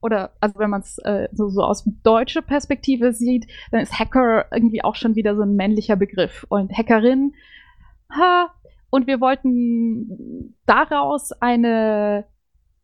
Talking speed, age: 140 wpm, 20-39